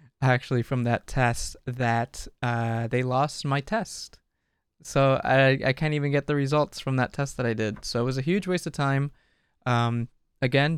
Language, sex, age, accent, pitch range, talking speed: English, male, 20-39, American, 120-145 Hz, 190 wpm